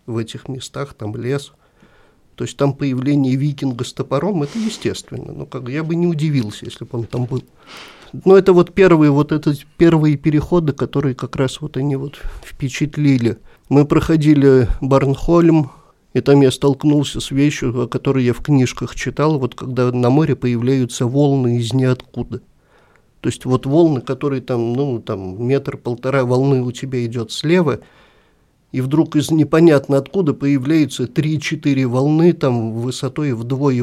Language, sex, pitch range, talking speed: Russian, male, 125-145 Hz, 160 wpm